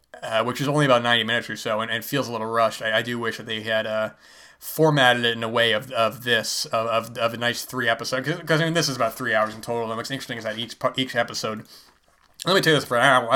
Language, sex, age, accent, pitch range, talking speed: English, male, 20-39, American, 110-120 Hz, 290 wpm